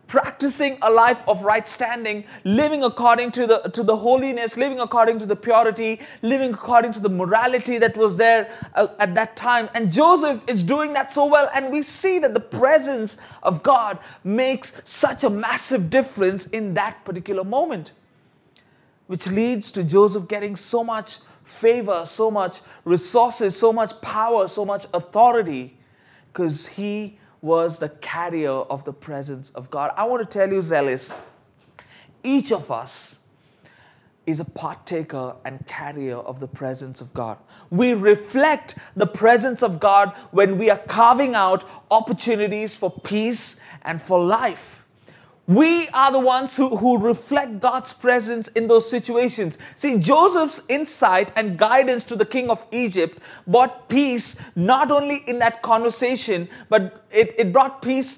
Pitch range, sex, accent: 190-245 Hz, male, Indian